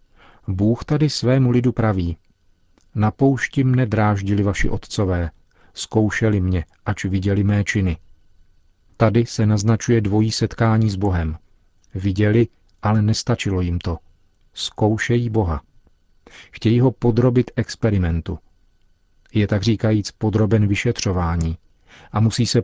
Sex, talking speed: male, 110 wpm